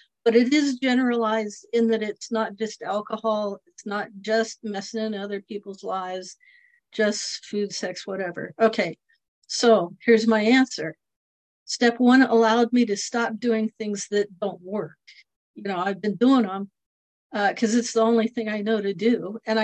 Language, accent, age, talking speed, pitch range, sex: English, American, 50-69, 170 wpm, 210-240 Hz, female